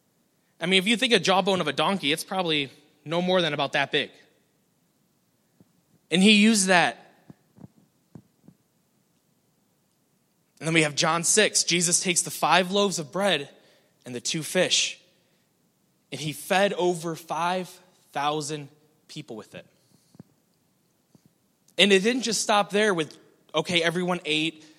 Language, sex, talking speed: English, male, 140 wpm